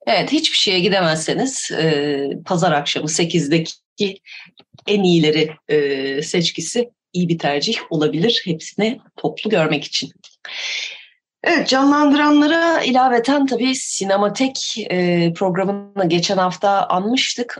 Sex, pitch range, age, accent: female, 150-195 Hz, 30-49, native